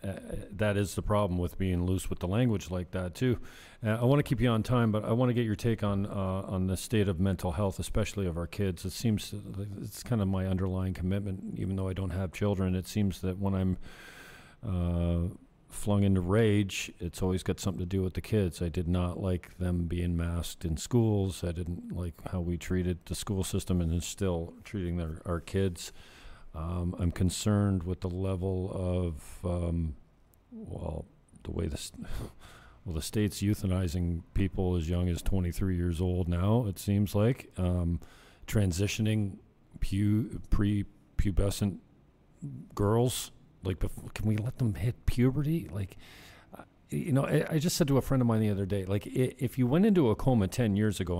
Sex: male